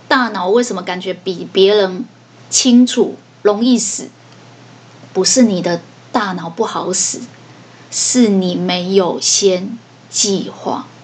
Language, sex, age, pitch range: Chinese, female, 20-39, 190-245 Hz